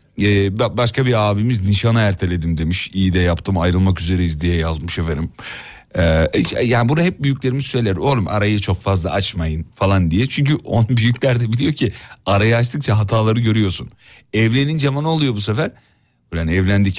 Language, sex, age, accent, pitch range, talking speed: Turkish, male, 40-59, native, 95-125 Hz, 155 wpm